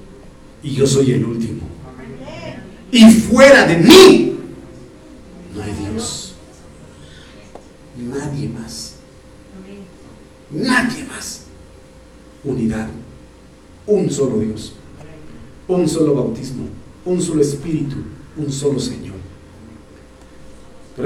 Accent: Mexican